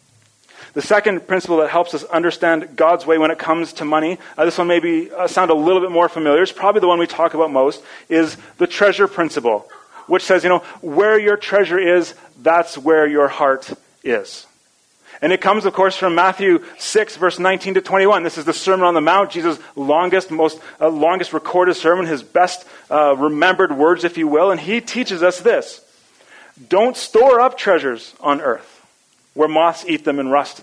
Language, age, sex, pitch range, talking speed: English, 30-49, male, 150-195 Hz, 200 wpm